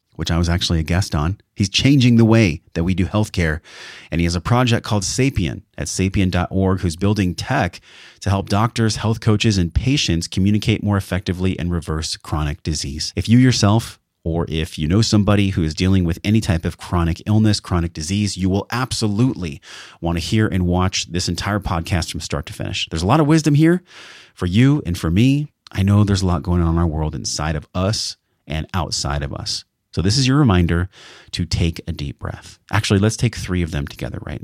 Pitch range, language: 85-110 Hz, English